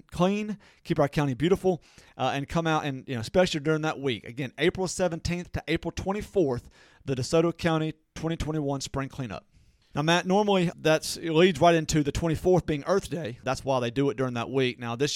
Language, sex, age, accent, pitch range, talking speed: English, male, 40-59, American, 135-165 Hz, 200 wpm